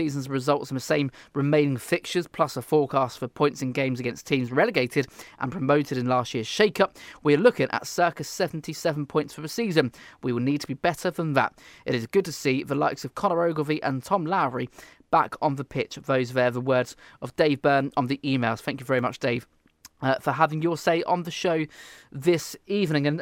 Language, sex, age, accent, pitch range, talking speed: English, male, 20-39, British, 130-170 Hz, 220 wpm